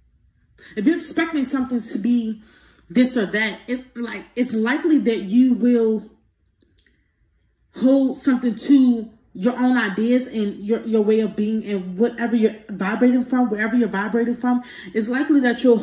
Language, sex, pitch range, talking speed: English, female, 210-255 Hz, 150 wpm